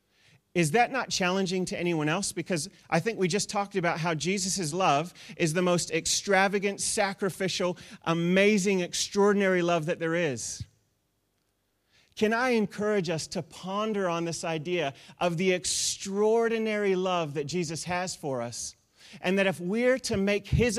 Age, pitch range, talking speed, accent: 30-49, 155-200 Hz, 155 wpm, American